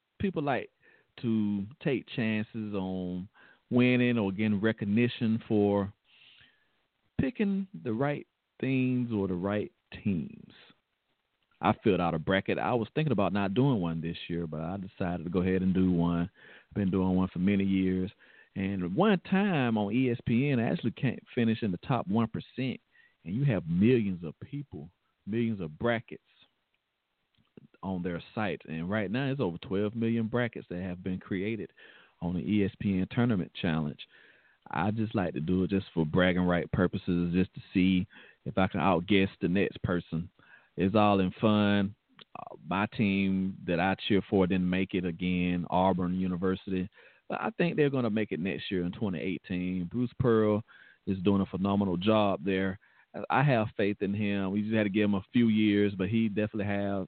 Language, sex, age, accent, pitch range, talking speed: English, male, 40-59, American, 95-115 Hz, 175 wpm